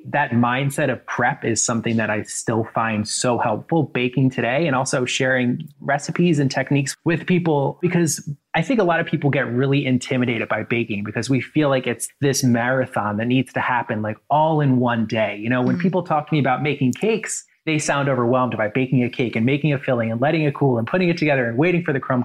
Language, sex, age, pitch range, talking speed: English, male, 20-39, 120-150 Hz, 225 wpm